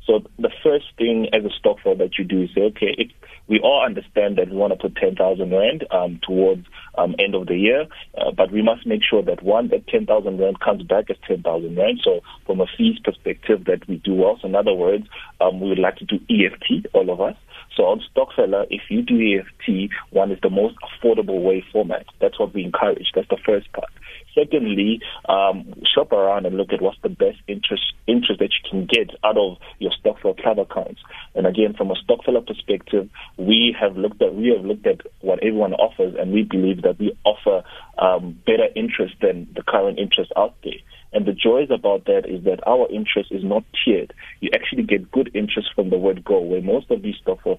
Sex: male